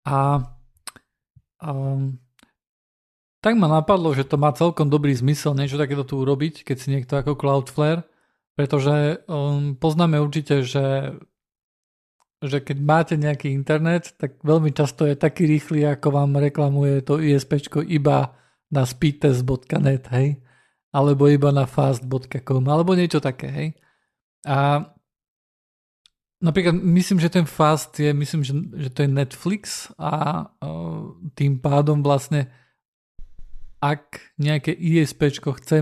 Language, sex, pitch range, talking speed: Slovak, male, 135-155 Hz, 125 wpm